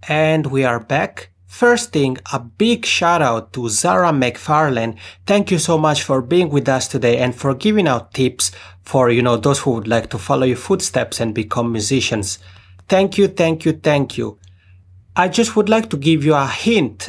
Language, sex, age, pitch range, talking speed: English, male, 30-49, 110-155 Hz, 195 wpm